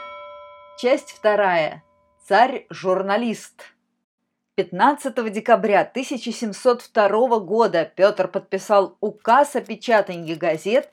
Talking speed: 70 wpm